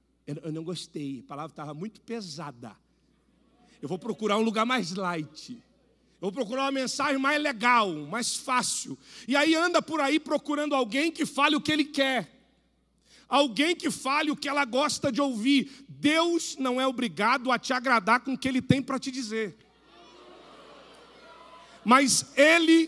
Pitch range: 220-275 Hz